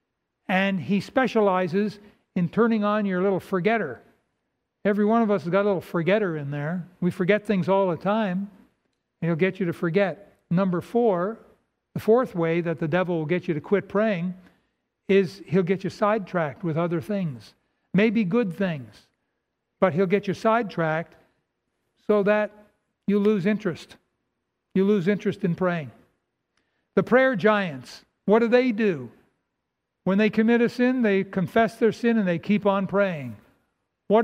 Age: 60-79